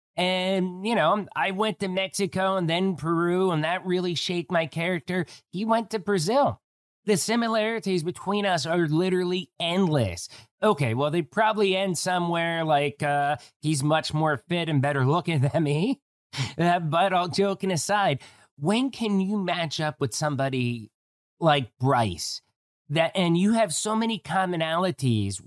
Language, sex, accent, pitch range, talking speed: English, male, American, 140-190 Hz, 150 wpm